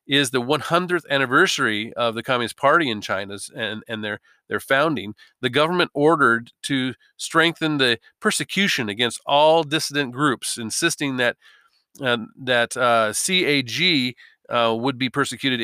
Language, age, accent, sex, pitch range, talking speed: English, 40-59, American, male, 120-155 Hz, 140 wpm